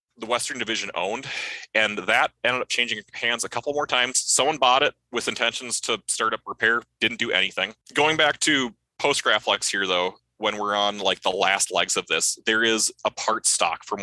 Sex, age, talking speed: male, 20-39, 200 wpm